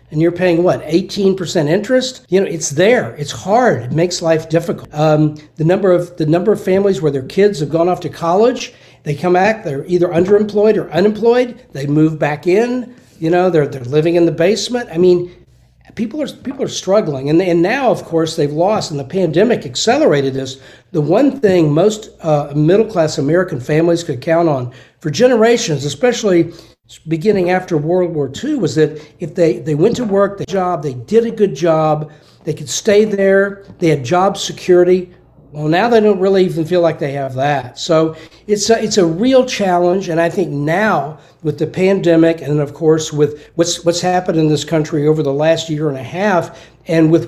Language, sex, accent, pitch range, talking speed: English, male, American, 155-195 Hz, 200 wpm